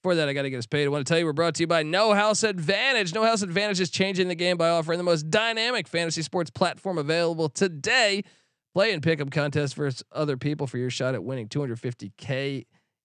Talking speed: 240 wpm